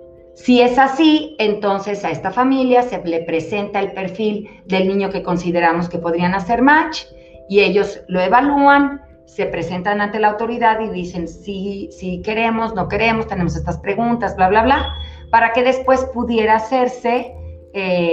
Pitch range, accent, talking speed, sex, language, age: 165-220 Hz, Mexican, 160 wpm, female, Spanish, 40-59